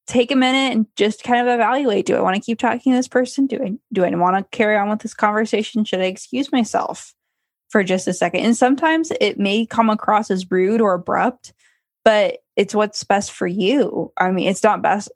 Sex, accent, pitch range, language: female, American, 190-245 Hz, English